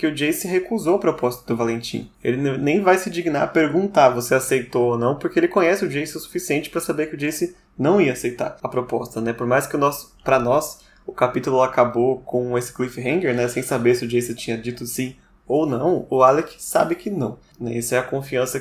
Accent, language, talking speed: Brazilian, Portuguese, 225 wpm